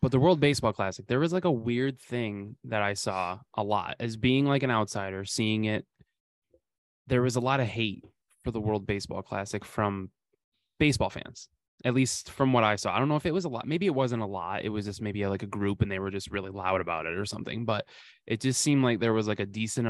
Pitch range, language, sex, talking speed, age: 100-120 Hz, English, male, 250 wpm, 20-39